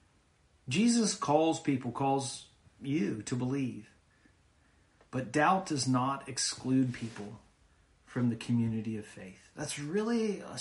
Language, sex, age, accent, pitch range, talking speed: English, male, 40-59, American, 110-140 Hz, 120 wpm